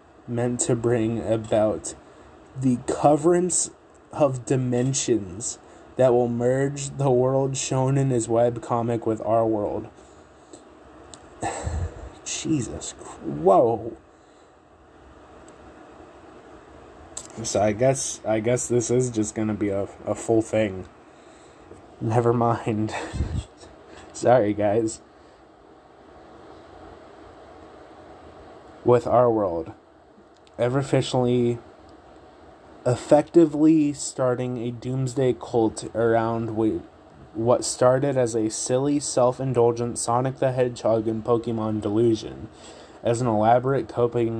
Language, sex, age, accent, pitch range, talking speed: English, male, 20-39, American, 110-130 Hz, 90 wpm